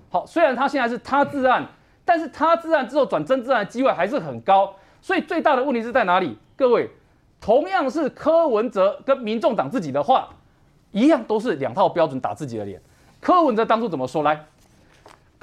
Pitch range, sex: 185-310 Hz, male